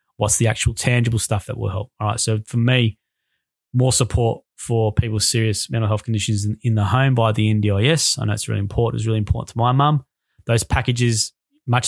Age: 20-39